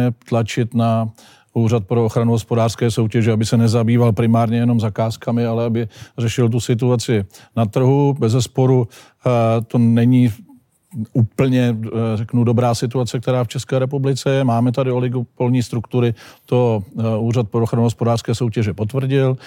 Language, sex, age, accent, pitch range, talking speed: Czech, male, 50-69, native, 115-125 Hz, 135 wpm